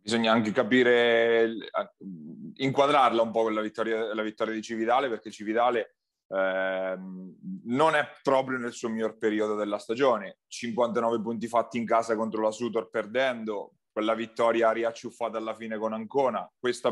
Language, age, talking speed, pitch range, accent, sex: Italian, 30-49, 150 wpm, 110-125 Hz, native, male